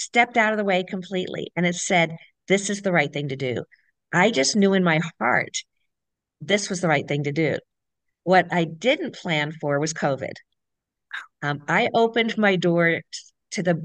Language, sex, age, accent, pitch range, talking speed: English, female, 50-69, American, 155-200 Hz, 185 wpm